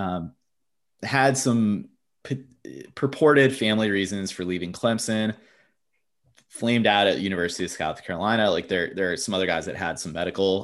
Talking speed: 150 wpm